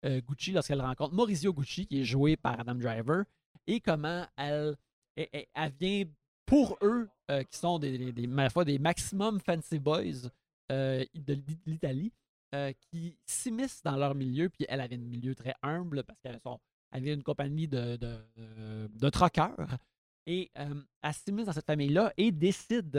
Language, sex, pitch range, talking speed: French, male, 140-195 Hz, 175 wpm